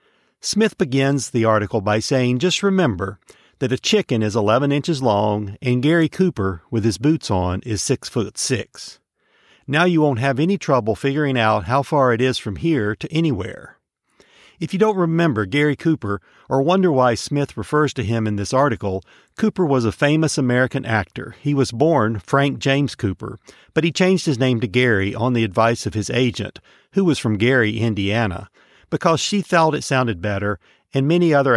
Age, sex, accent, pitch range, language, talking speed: 50-69, male, American, 110-150 Hz, English, 185 wpm